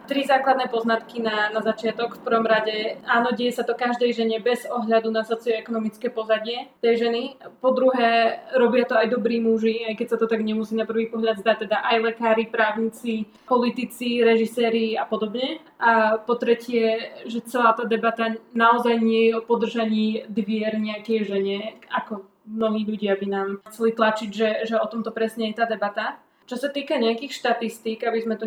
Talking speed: 180 wpm